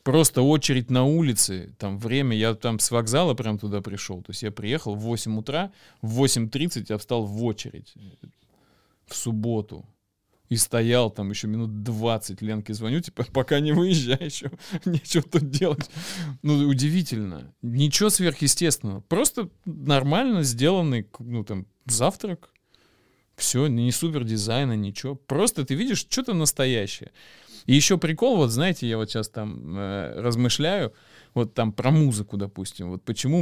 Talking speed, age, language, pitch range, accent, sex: 145 wpm, 20-39, Russian, 110-155 Hz, native, male